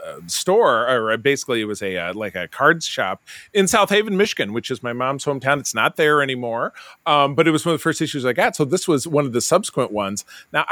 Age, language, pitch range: 30-49, English, 115-150 Hz